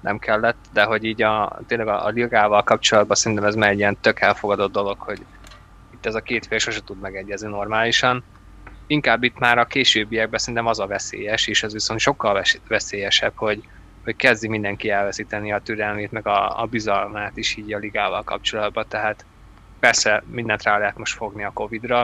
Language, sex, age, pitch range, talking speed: Hungarian, male, 20-39, 100-110 Hz, 185 wpm